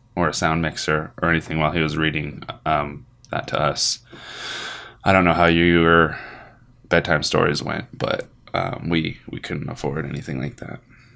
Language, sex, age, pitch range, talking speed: English, male, 20-39, 95-120 Hz, 165 wpm